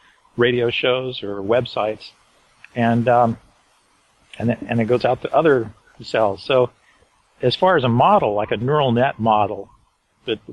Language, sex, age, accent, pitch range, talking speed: English, male, 40-59, American, 110-130 Hz, 155 wpm